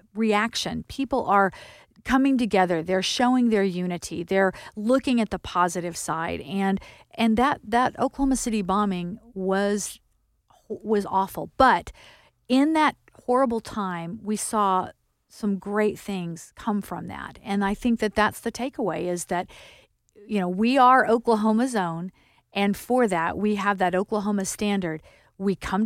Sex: female